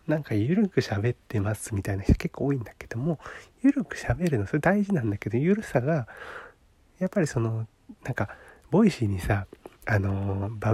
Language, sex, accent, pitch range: Japanese, male, native, 110-155 Hz